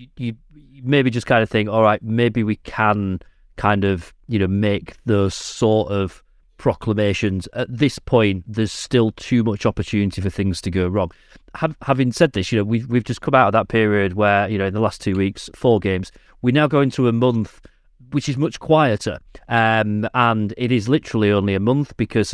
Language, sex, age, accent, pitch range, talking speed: English, male, 30-49, British, 100-120 Hz, 200 wpm